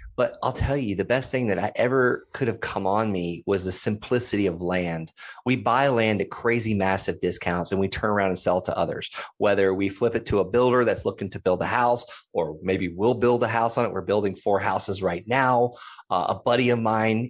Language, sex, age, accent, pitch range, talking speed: English, male, 30-49, American, 95-120 Hz, 235 wpm